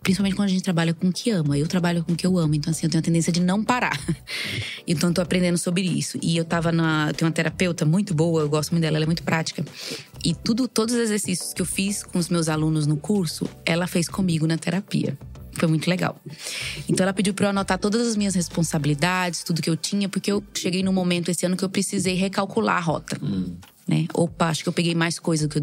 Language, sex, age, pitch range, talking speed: Portuguese, female, 20-39, 160-195 Hz, 255 wpm